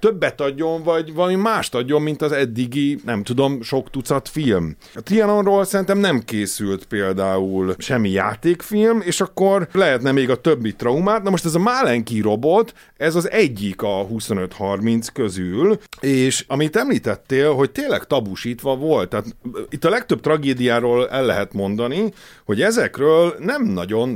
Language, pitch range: Hungarian, 115-180 Hz